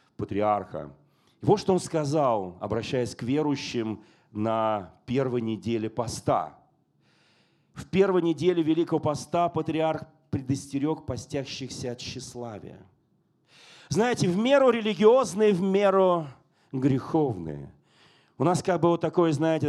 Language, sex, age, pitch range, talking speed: Russian, male, 40-59, 130-180 Hz, 110 wpm